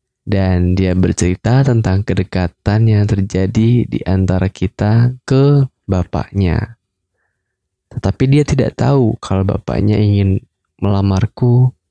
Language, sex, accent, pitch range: Indonesian, male, native, 95-110 Hz